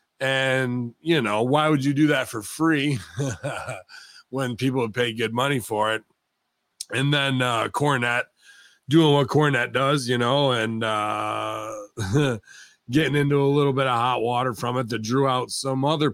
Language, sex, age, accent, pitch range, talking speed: English, male, 30-49, American, 105-135 Hz, 165 wpm